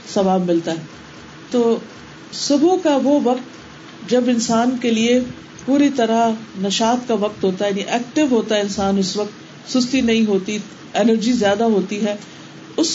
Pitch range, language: 195-250 Hz, Urdu